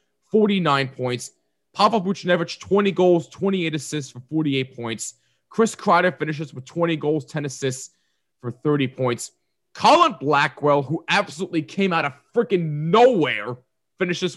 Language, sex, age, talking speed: English, male, 30-49, 135 wpm